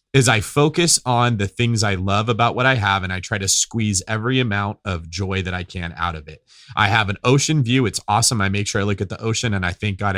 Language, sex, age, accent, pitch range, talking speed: English, male, 30-49, American, 100-130 Hz, 270 wpm